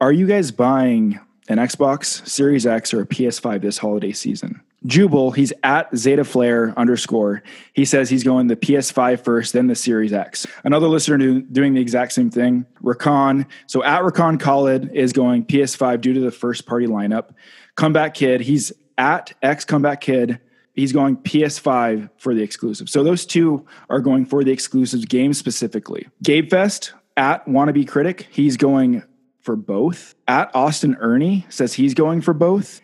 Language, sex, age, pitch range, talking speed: English, male, 20-39, 125-155 Hz, 165 wpm